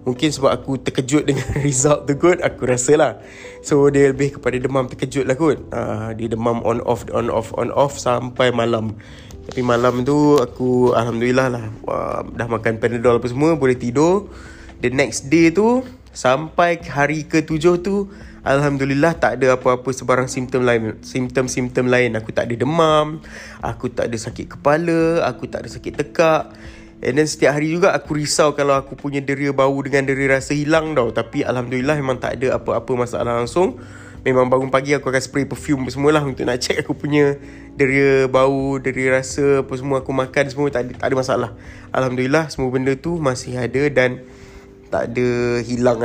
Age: 20-39